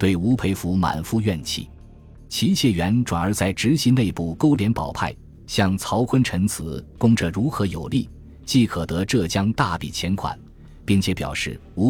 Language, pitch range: Chinese, 85-115 Hz